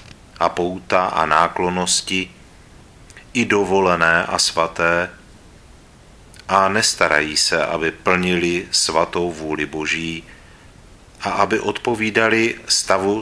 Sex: male